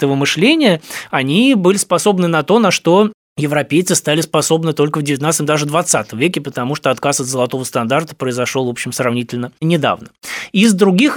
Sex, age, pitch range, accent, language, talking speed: male, 20-39, 130-170 Hz, native, Russian, 160 wpm